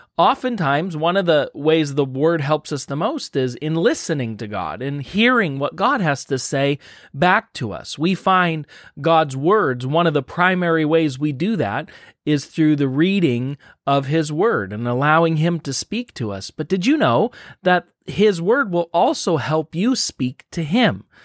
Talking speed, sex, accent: 185 wpm, male, American